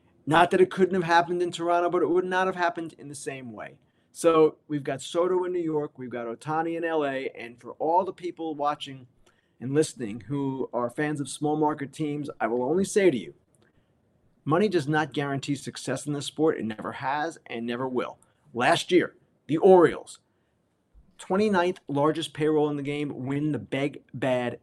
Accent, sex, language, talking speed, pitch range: American, male, English, 190 wpm, 130-175 Hz